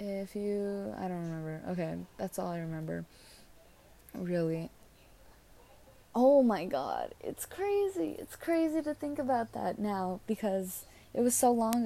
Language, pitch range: English, 180-215 Hz